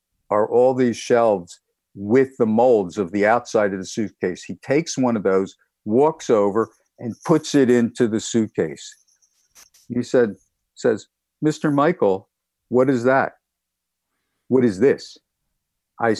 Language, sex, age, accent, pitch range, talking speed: English, male, 50-69, American, 110-150 Hz, 135 wpm